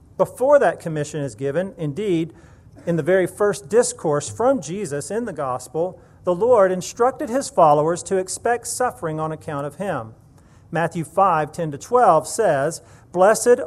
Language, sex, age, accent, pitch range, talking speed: English, male, 40-59, American, 140-200 Hz, 155 wpm